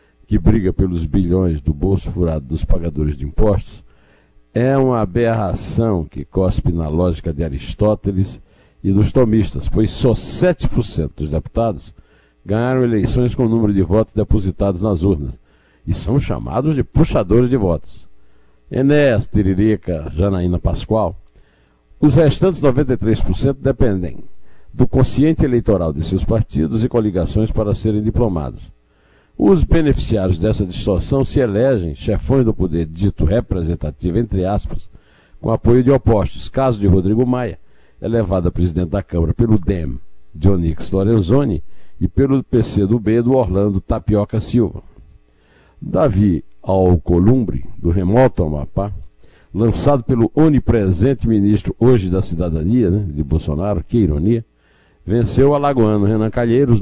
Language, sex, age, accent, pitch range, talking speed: Portuguese, male, 60-79, Brazilian, 85-120 Hz, 130 wpm